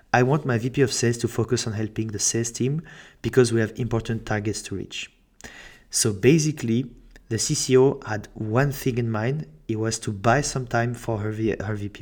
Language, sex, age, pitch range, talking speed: English, male, 30-49, 105-125 Hz, 195 wpm